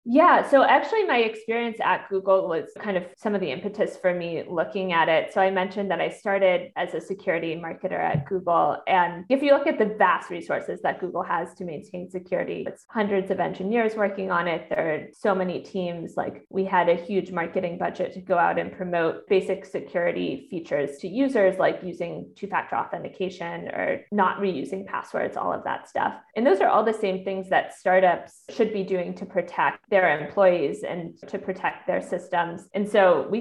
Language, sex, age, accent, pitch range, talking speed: English, female, 20-39, American, 175-205 Hz, 200 wpm